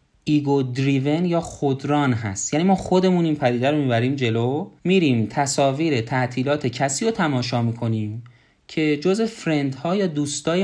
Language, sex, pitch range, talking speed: Persian, male, 125-170 Hz, 140 wpm